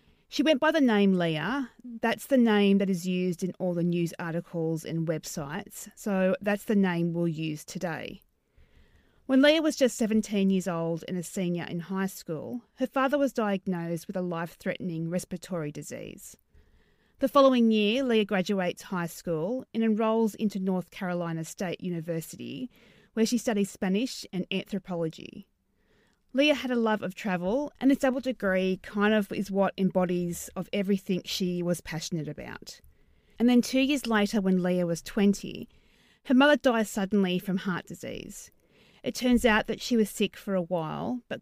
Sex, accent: female, Australian